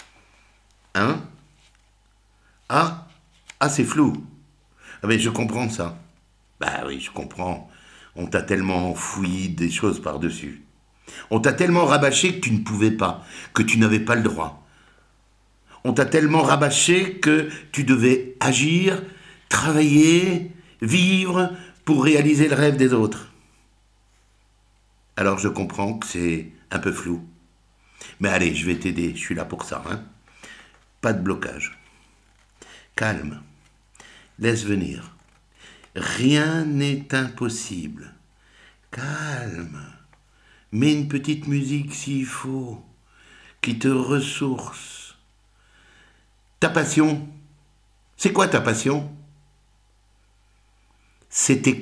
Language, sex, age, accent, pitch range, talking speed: French, male, 60-79, French, 100-145 Hz, 110 wpm